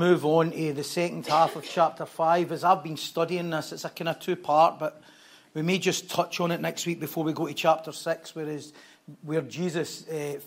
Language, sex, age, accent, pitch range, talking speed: English, male, 40-59, British, 155-185 Hz, 225 wpm